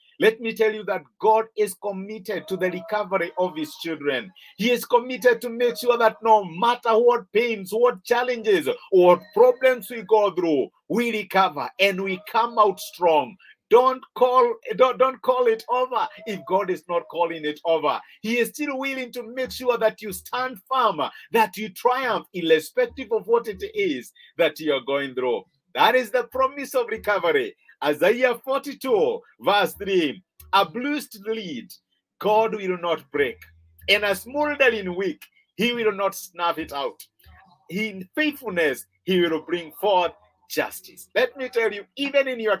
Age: 50-69